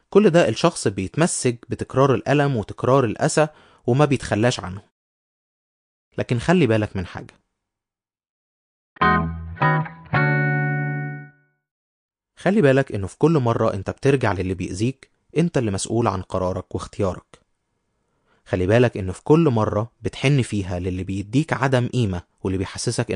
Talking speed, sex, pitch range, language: 120 wpm, male, 95-130 Hz, Arabic